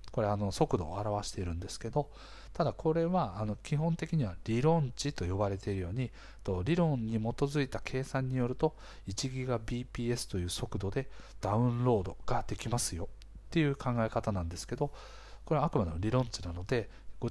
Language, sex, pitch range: Japanese, male, 100-130 Hz